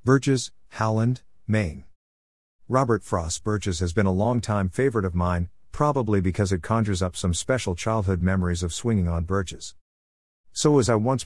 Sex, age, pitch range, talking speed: male, 50-69, 90-115 Hz, 165 wpm